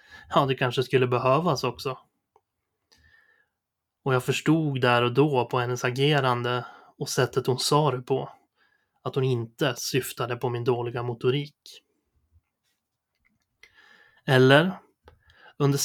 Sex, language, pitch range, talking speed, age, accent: male, Swedish, 125-150 Hz, 115 wpm, 20-39, native